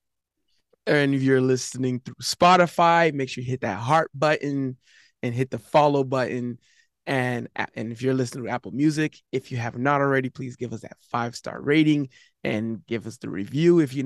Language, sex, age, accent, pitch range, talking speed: English, male, 20-39, American, 125-155 Hz, 190 wpm